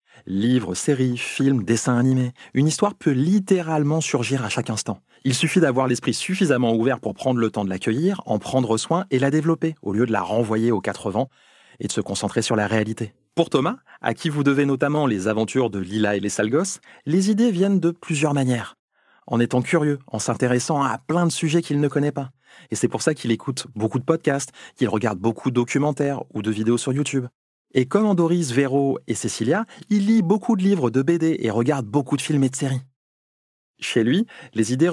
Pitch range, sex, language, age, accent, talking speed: 115-160 Hz, male, French, 30-49, French, 215 wpm